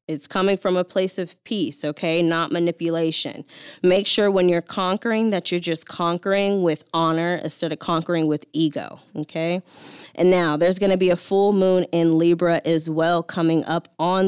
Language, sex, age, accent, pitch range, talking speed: English, female, 10-29, American, 165-195 Hz, 180 wpm